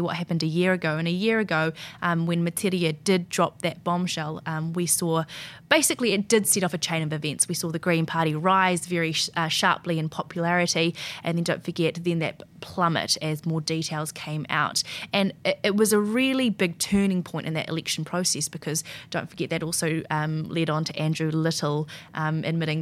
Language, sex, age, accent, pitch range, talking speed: English, female, 20-39, Australian, 155-190 Hz, 205 wpm